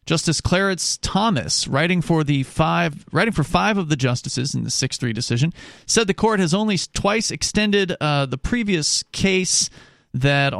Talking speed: 165 wpm